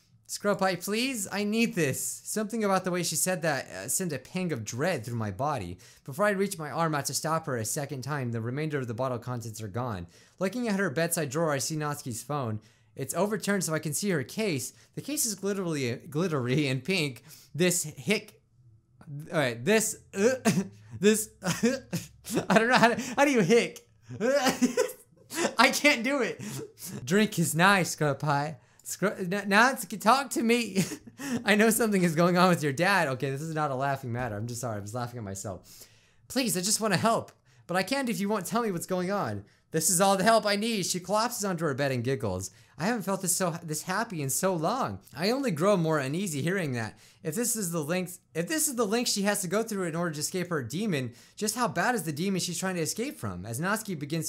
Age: 20-39